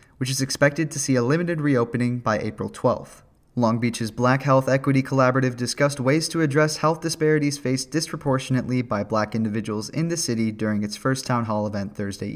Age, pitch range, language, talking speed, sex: 20-39, 110-140 Hz, English, 185 wpm, male